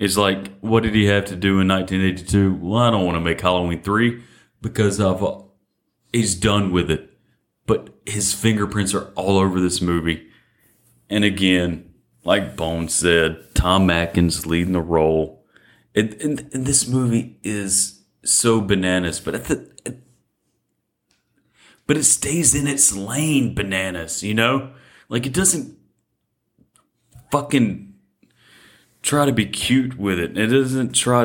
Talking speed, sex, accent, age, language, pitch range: 145 wpm, male, American, 30-49, English, 90-115 Hz